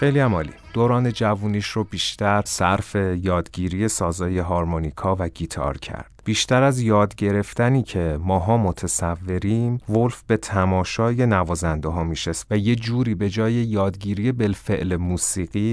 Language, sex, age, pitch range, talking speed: Persian, male, 30-49, 90-110 Hz, 130 wpm